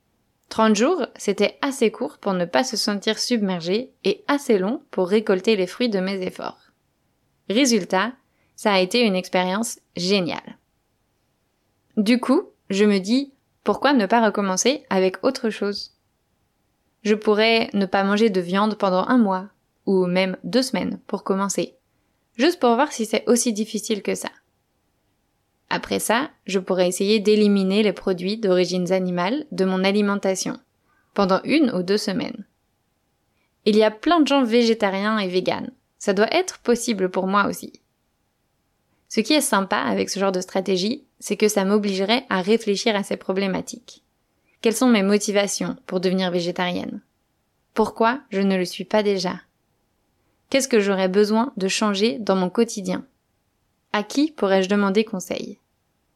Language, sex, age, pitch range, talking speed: French, female, 20-39, 190-230 Hz, 155 wpm